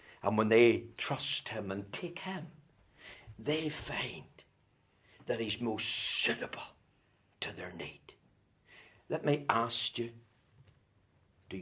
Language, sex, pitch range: English, male, 100-130 Hz